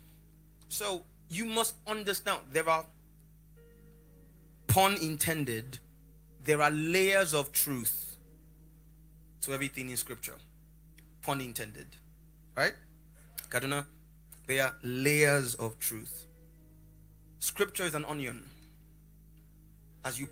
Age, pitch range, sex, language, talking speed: 30-49, 140-160 Hz, male, English, 95 wpm